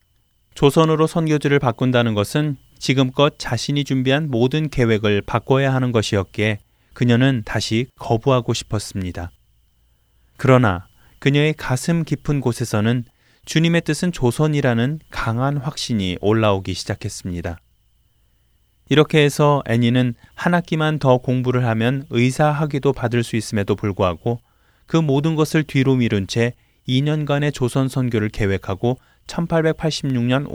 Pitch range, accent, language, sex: 110-145 Hz, native, Korean, male